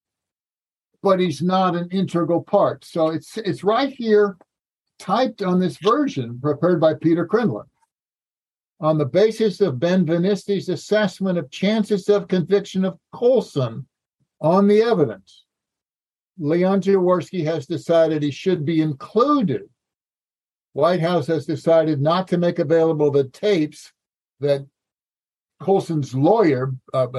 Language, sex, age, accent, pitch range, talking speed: English, male, 60-79, American, 150-195 Hz, 125 wpm